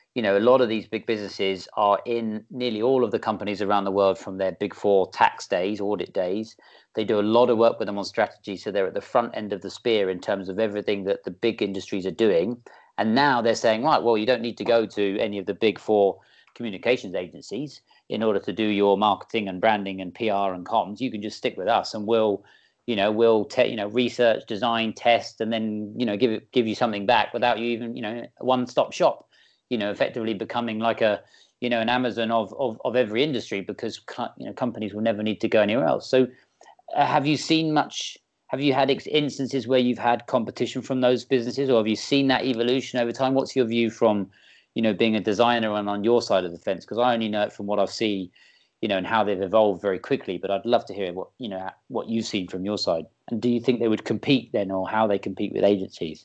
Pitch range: 105-125 Hz